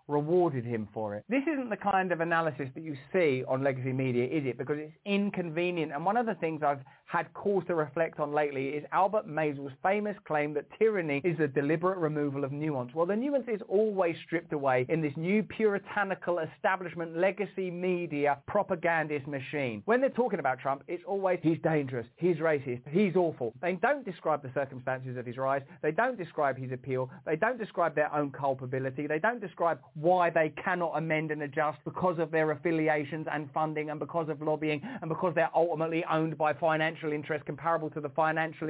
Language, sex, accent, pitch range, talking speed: English, male, British, 145-185 Hz, 195 wpm